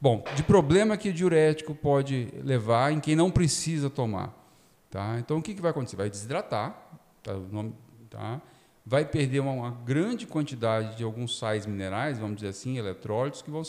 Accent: Brazilian